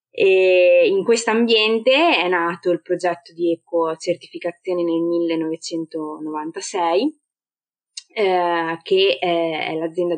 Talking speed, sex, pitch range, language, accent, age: 100 wpm, female, 170-210 Hz, Italian, native, 20-39